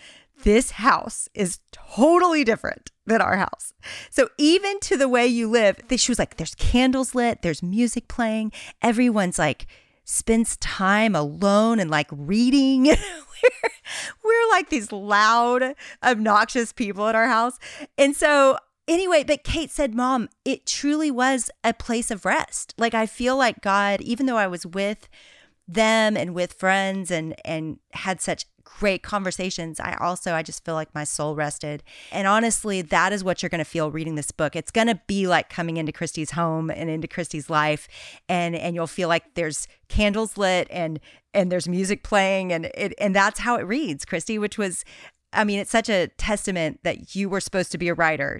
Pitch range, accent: 165-230 Hz, American